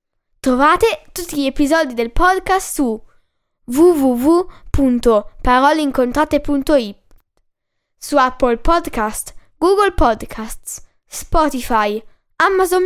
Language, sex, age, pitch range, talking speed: Italian, female, 10-29, 220-320 Hz, 70 wpm